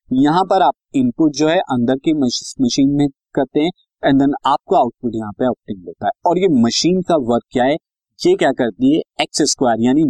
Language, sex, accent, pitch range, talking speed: Hindi, male, native, 120-185 Hz, 195 wpm